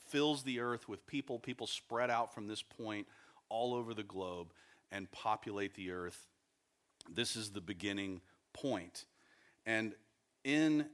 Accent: American